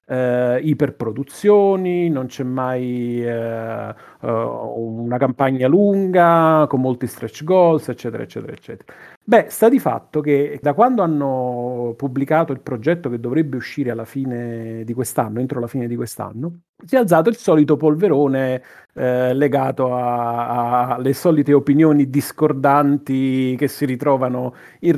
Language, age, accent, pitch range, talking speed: Italian, 40-59, native, 130-165 Hz, 125 wpm